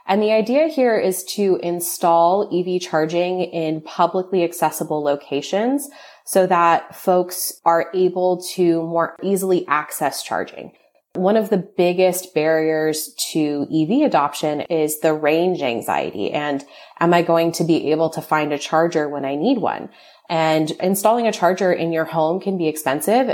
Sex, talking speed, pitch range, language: female, 155 wpm, 155-185 Hz, English